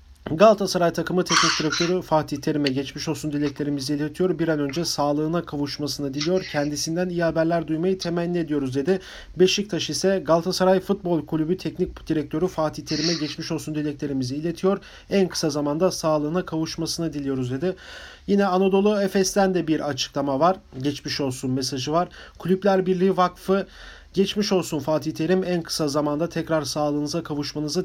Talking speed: 145 wpm